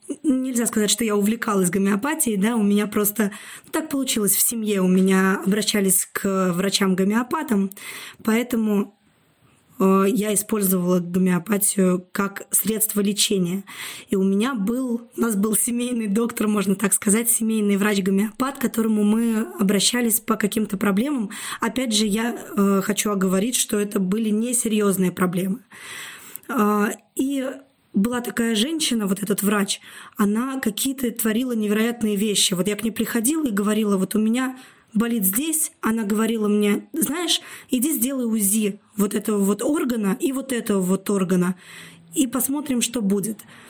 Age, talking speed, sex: 20-39, 140 wpm, female